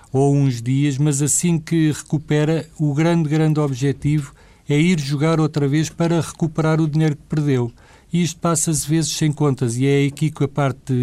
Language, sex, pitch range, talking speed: Portuguese, male, 125-145 Hz, 185 wpm